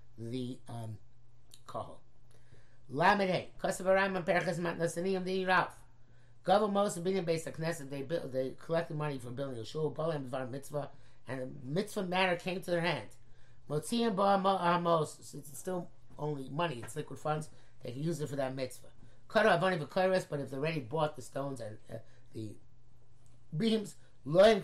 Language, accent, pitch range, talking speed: English, American, 125-175 Hz, 160 wpm